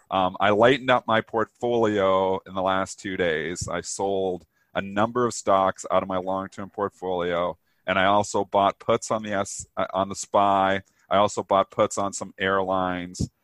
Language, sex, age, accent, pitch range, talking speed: English, male, 40-59, American, 95-110 Hz, 185 wpm